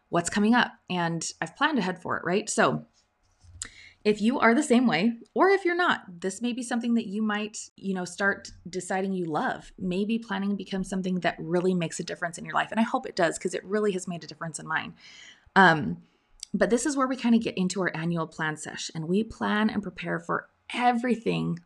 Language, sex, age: English, female, 20-39